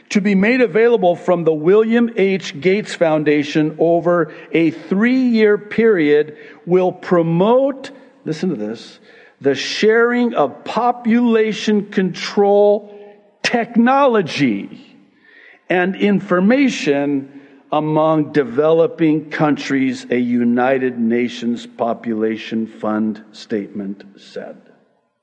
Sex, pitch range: male, 110-175 Hz